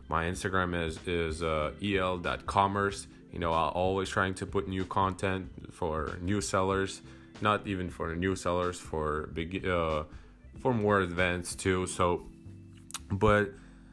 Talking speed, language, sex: 145 wpm, English, male